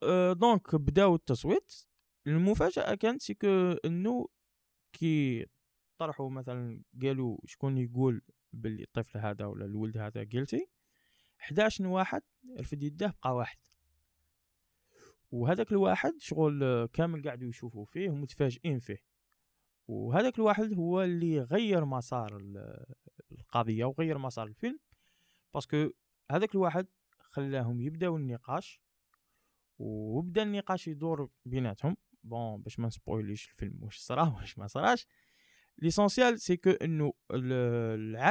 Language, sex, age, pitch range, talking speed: French, male, 20-39, 120-175 Hz, 110 wpm